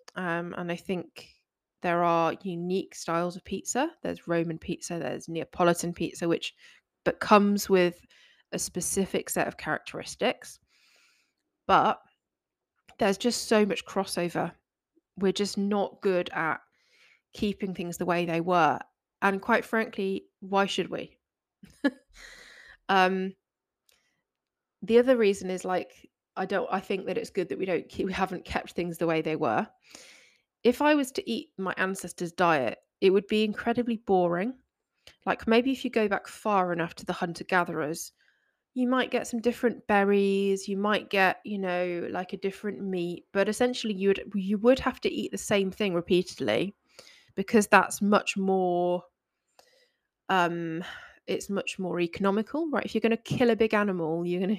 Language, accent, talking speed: English, British, 160 wpm